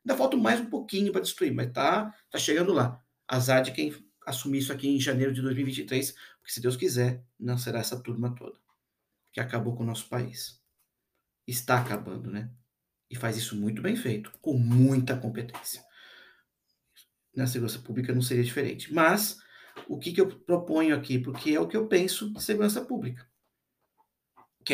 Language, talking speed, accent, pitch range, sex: Portuguese, 175 wpm, Brazilian, 125-155 Hz, male